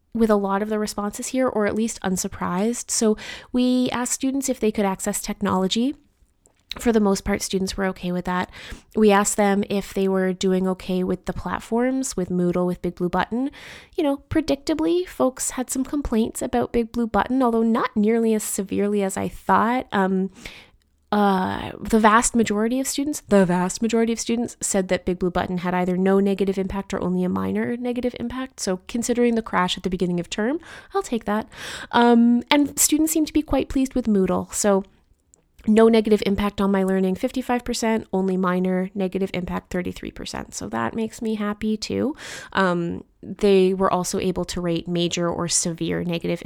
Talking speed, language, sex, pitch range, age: 185 wpm, English, female, 185-240 Hz, 20-39